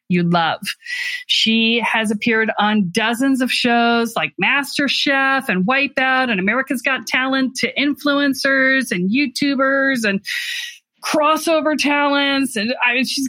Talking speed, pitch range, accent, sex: 130 wpm, 200-270 Hz, American, female